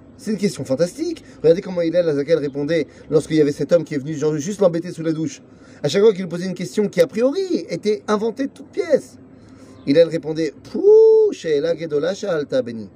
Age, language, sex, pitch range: 30-49, French, male, 140-210 Hz